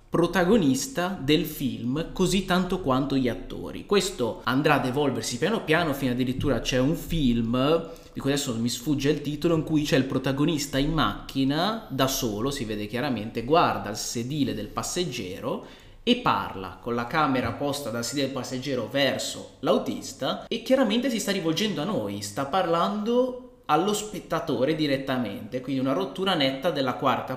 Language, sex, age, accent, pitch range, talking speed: Italian, male, 20-39, native, 120-160 Hz, 160 wpm